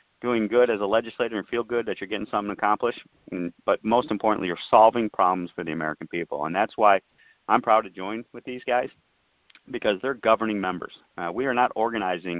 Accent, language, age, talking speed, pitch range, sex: American, English, 40-59, 210 wpm, 90-115 Hz, male